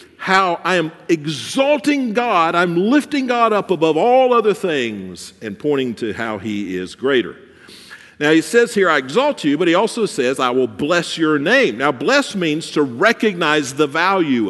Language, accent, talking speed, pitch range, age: English, American, 180 wpm, 145-230 Hz, 50-69